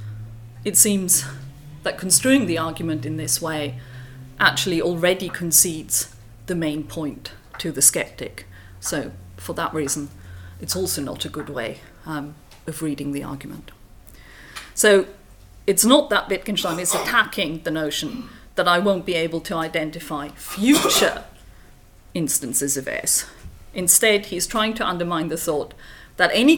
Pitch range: 155-200 Hz